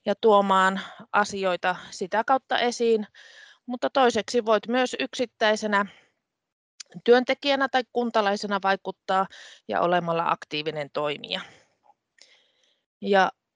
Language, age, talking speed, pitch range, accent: Finnish, 30-49, 90 wpm, 175-210 Hz, native